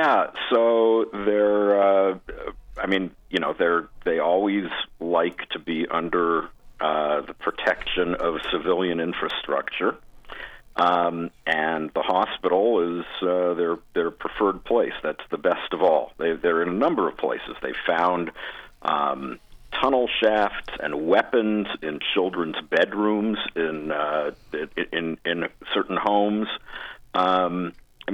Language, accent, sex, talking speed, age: English, American, male, 130 wpm, 50-69